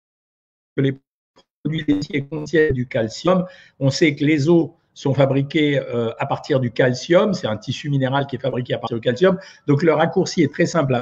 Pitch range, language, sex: 135-180 Hz, French, male